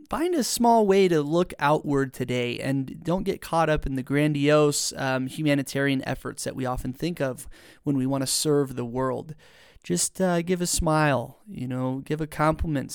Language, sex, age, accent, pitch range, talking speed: English, male, 30-49, American, 130-155 Hz, 190 wpm